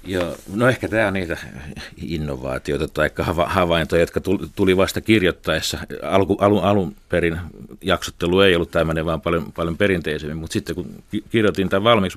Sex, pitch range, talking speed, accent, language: male, 85-105 Hz, 165 wpm, native, Finnish